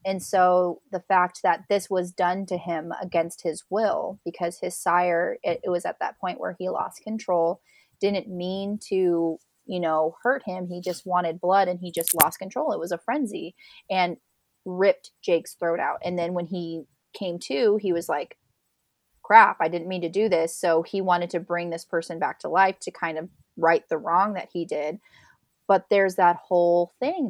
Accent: American